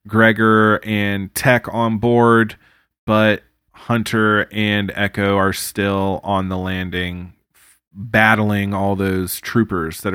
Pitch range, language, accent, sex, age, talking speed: 100-115 Hz, English, American, male, 20-39, 110 wpm